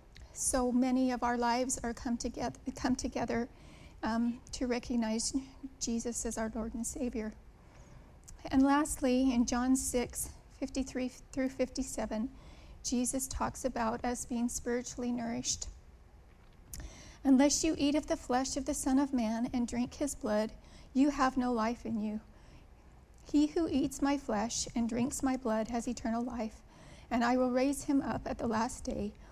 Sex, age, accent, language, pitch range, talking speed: female, 40-59, American, English, 230-270 Hz, 155 wpm